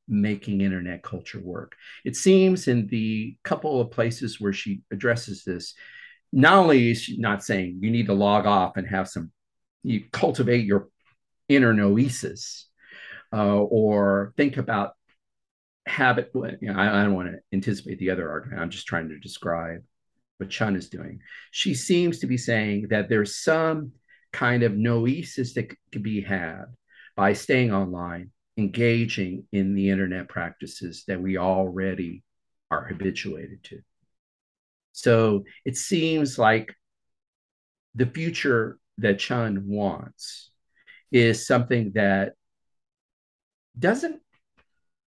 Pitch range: 100-150 Hz